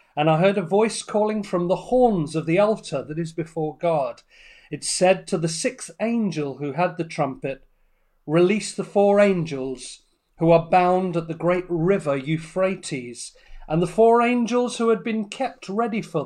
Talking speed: 175 wpm